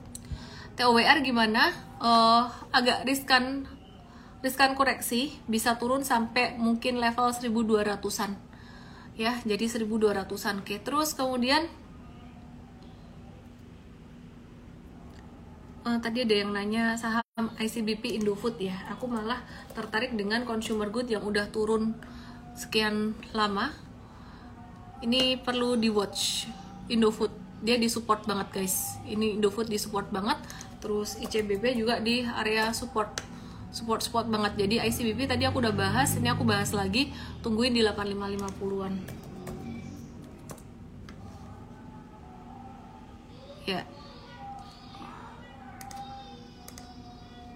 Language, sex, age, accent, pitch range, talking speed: Indonesian, female, 20-39, native, 205-240 Hz, 100 wpm